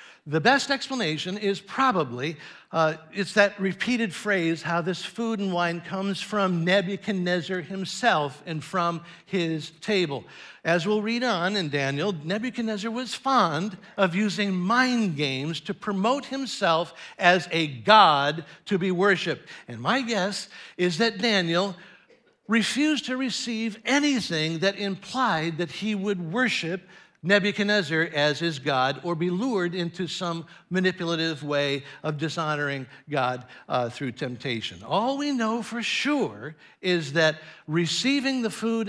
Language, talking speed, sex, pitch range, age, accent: English, 135 wpm, male, 165-220 Hz, 60-79, American